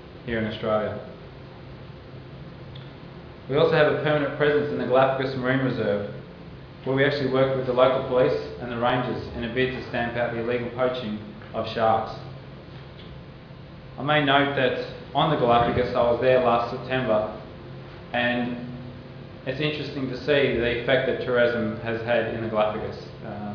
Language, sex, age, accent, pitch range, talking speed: English, male, 20-39, Australian, 115-130 Hz, 160 wpm